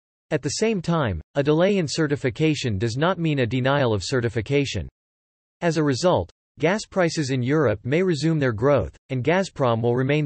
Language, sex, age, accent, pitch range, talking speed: English, male, 40-59, American, 115-160 Hz, 175 wpm